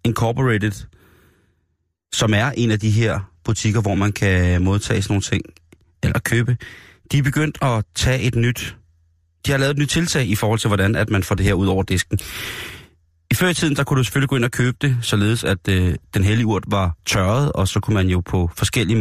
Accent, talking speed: native, 220 wpm